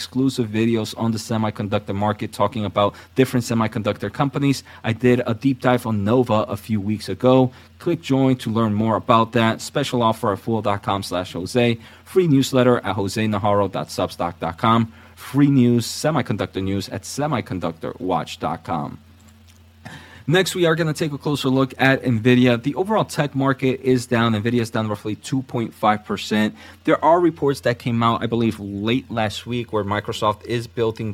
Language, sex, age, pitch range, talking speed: English, male, 30-49, 105-125 Hz, 160 wpm